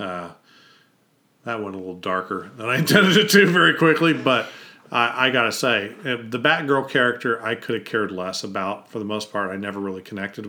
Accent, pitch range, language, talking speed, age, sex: American, 105-140 Hz, English, 200 wpm, 40-59, male